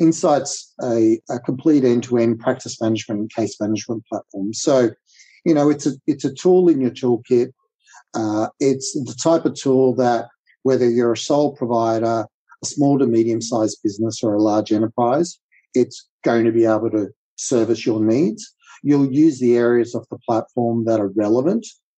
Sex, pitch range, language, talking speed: male, 115-145 Hz, English, 170 wpm